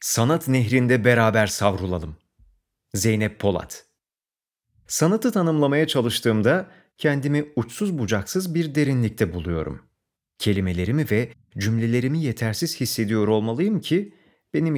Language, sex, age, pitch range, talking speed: Turkish, male, 40-59, 95-155 Hz, 95 wpm